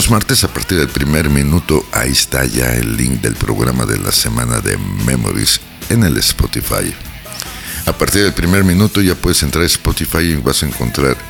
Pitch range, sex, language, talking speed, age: 65-90 Hz, male, Spanish, 185 wpm, 60-79